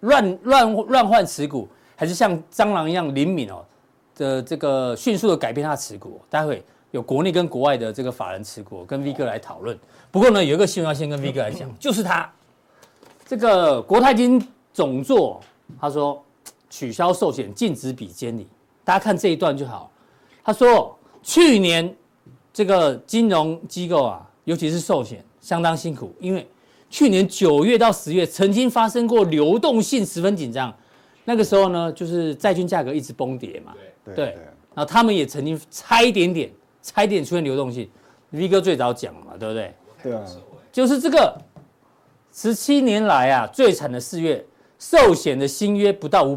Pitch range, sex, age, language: 140-205 Hz, male, 40-59, Chinese